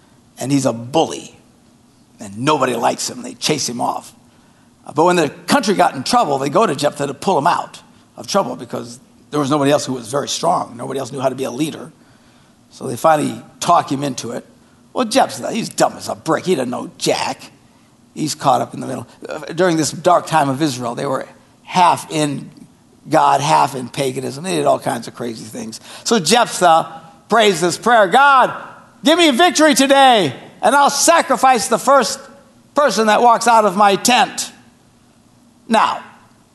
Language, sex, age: English, male, 60-79